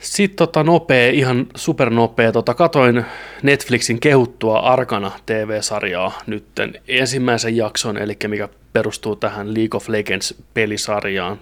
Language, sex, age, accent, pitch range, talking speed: Finnish, male, 30-49, native, 105-125 Hz, 105 wpm